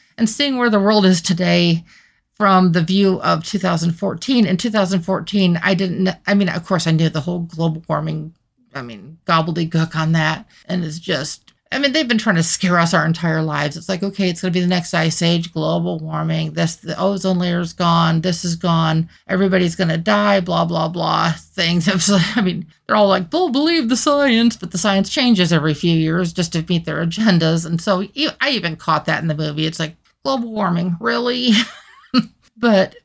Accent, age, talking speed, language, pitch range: American, 40-59, 200 wpm, English, 165-200 Hz